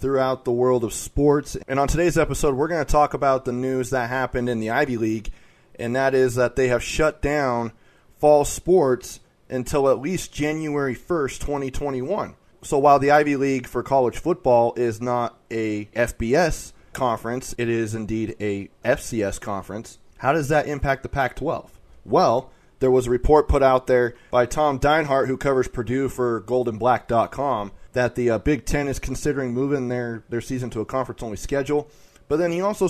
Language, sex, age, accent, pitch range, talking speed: English, male, 20-39, American, 115-140 Hz, 180 wpm